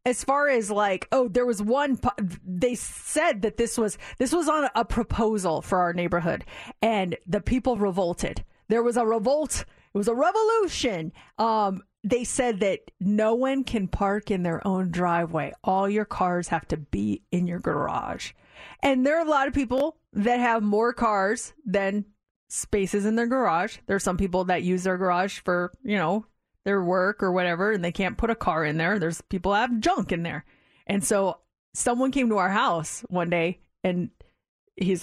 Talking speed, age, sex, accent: 190 wpm, 30-49, female, American